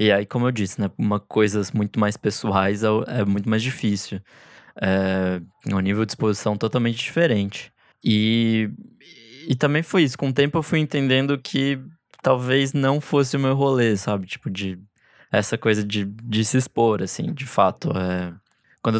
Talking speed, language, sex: 175 wpm, Portuguese, male